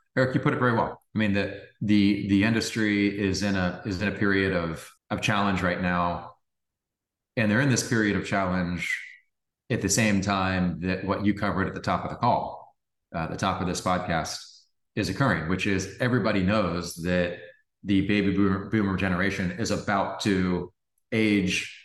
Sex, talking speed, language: male, 185 wpm, English